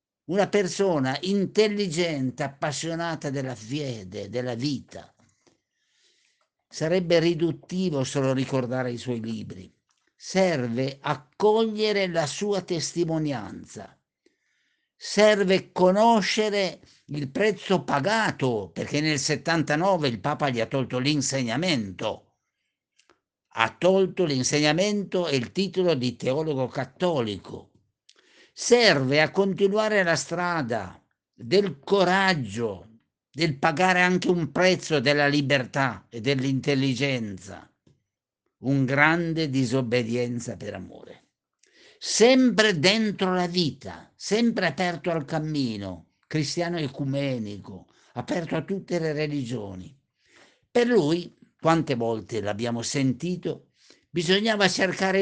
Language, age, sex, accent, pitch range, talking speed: Italian, 60-79, male, native, 130-185 Hz, 95 wpm